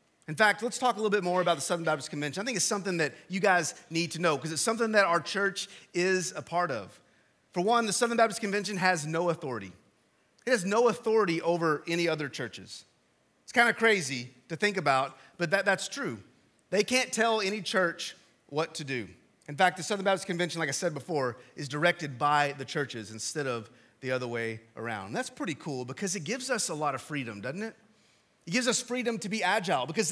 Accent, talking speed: American, 220 wpm